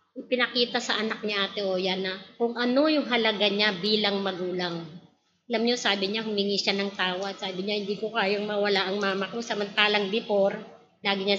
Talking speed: 190 wpm